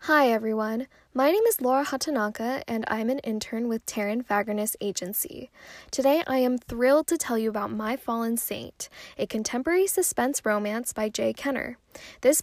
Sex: female